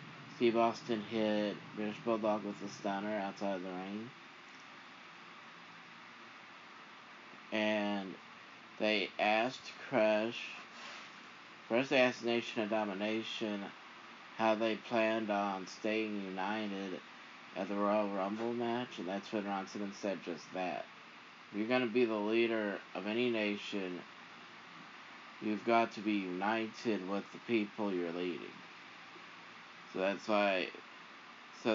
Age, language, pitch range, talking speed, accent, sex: 20-39, English, 100-115 Hz, 120 wpm, American, male